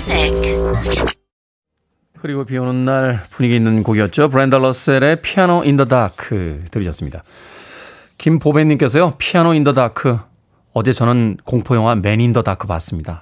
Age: 30-49